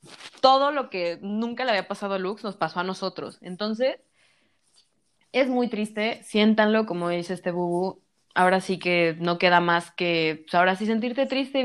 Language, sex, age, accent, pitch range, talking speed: Spanish, female, 20-39, Mexican, 175-235 Hz, 180 wpm